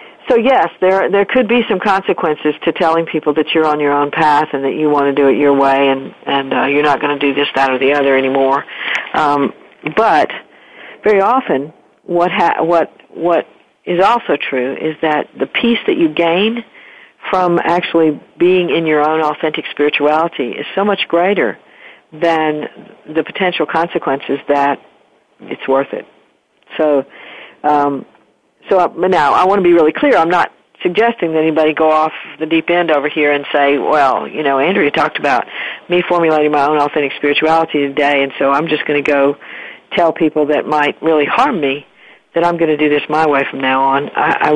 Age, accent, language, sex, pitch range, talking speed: 50-69, American, English, female, 145-170 Hz, 190 wpm